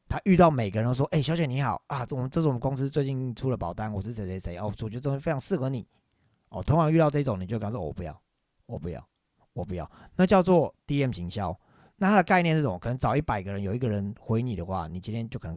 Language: Chinese